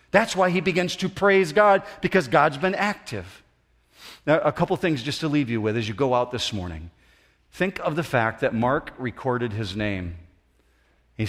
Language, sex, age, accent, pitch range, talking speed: English, male, 40-59, American, 95-160 Hz, 190 wpm